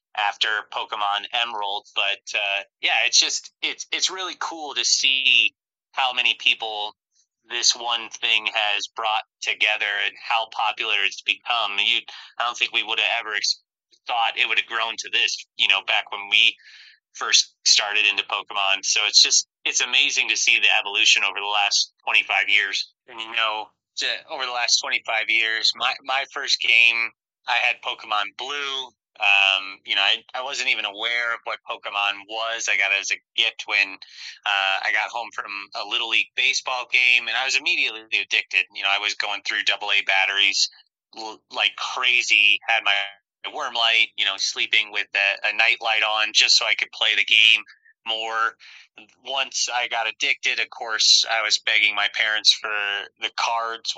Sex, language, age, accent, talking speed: male, English, 30-49, American, 180 wpm